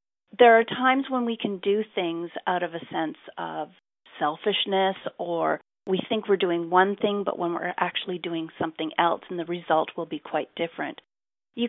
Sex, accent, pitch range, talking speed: female, American, 170-215 Hz, 185 wpm